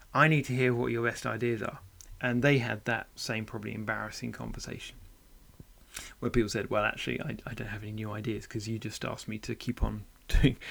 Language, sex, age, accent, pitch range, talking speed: English, male, 30-49, British, 115-145 Hz, 215 wpm